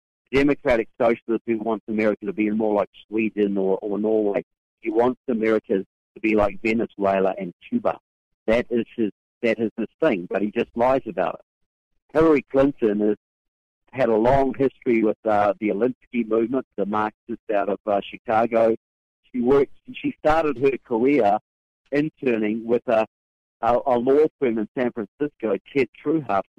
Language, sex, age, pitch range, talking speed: English, male, 50-69, 105-130 Hz, 160 wpm